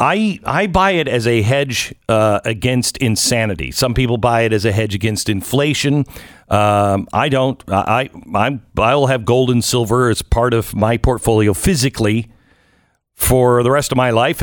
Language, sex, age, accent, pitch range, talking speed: English, male, 50-69, American, 110-155 Hz, 175 wpm